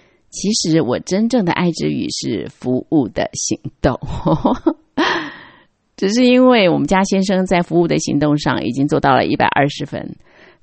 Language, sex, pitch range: Chinese, female, 150-240 Hz